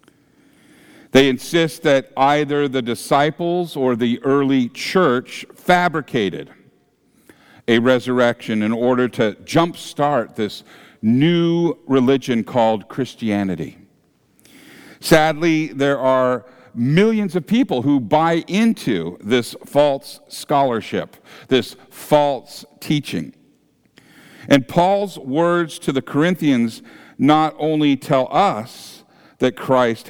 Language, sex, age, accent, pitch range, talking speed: English, male, 50-69, American, 120-155 Hz, 100 wpm